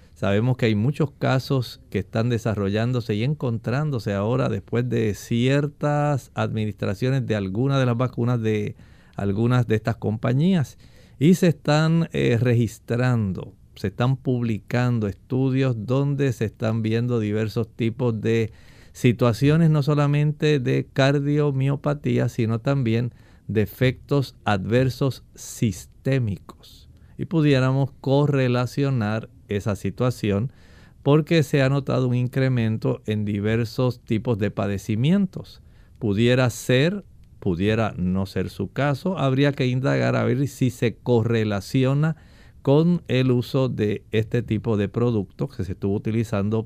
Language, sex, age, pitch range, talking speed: Spanish, male, 50-69, 110-135 Hz, 120 wpm